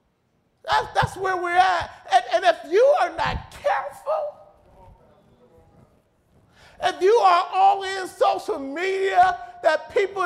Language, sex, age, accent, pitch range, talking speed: English, male, 50-69, American, 310-385 Hz, 125 wpm